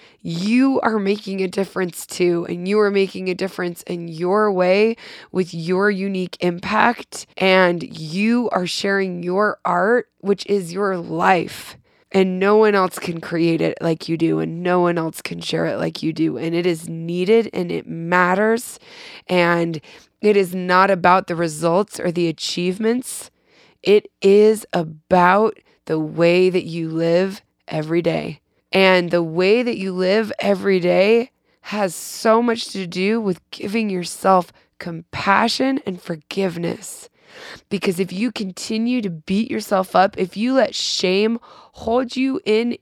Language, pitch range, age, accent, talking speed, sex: English, 180-235 Hz, 20-39, American, 155 wpm, female